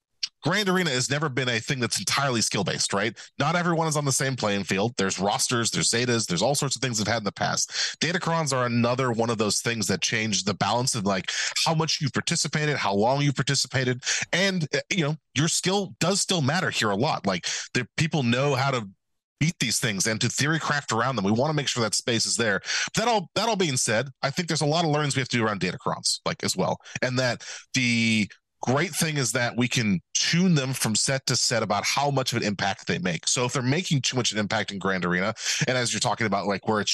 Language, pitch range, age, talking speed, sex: English, 115-150 Hz, 30-49, 250 wpm, male